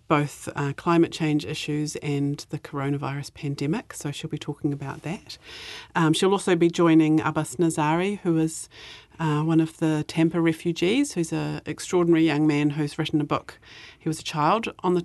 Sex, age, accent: female, 40-59, Australian